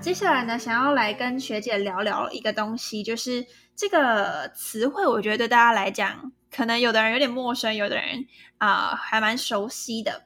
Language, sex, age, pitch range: Chinese, female, 10-29, 215-280 Hz